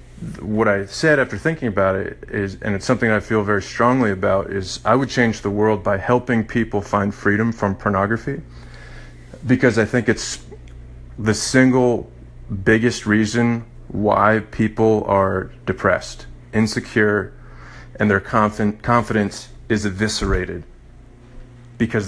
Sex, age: male, 30-49